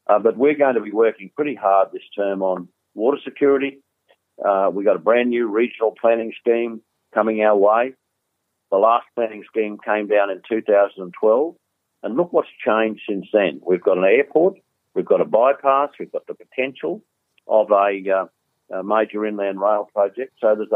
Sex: male